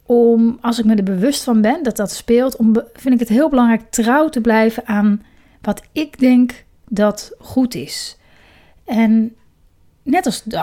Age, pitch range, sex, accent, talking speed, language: 30-49, 205-250 Hz, female, Dutch, 175 wpm, Dutch